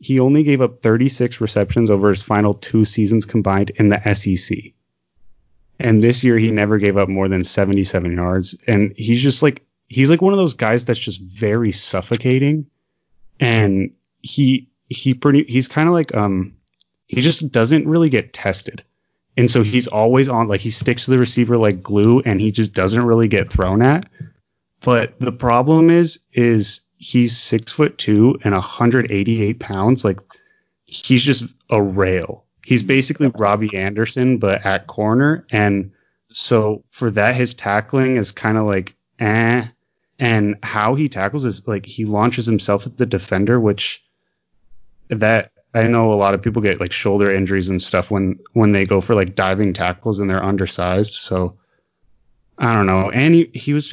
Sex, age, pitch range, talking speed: male, 30-49, 100-125 Hz, 170 wpm